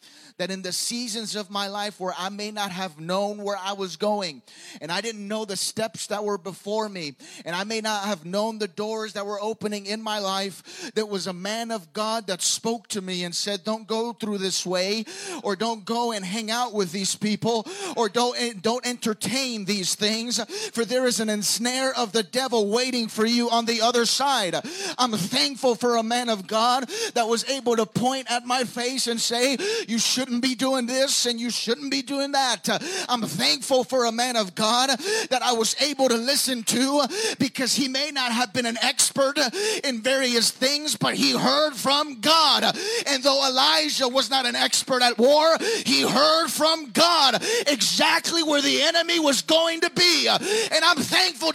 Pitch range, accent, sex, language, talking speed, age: 215-300 Hz, American, male, English, 200 wpm, 30-49